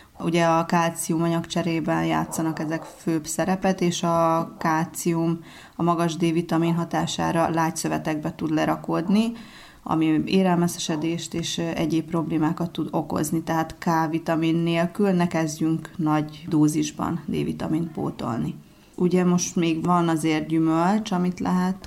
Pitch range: 160-175 Hz